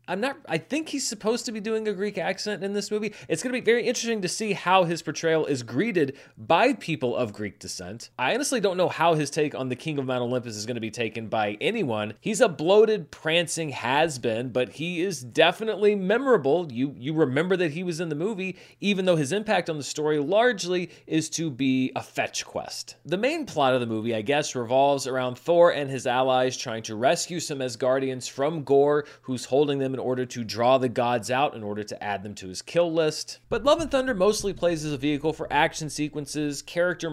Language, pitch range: English, 130-190 Hz